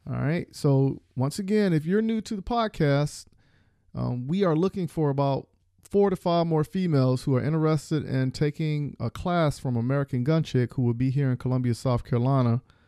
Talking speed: 190 wpm